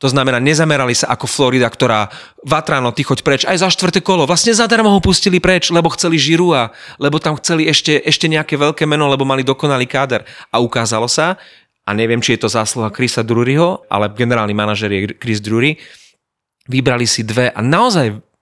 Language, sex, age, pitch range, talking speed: Slovak, male, 30-49, 115-145 Hz, 185 wpm